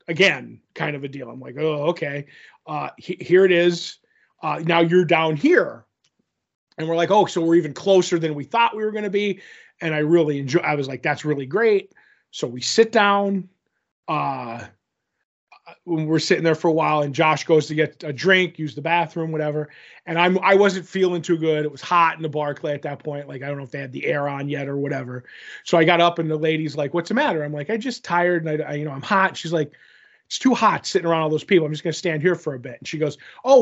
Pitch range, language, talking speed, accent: 155-185 Hz, English, 255 wpm, American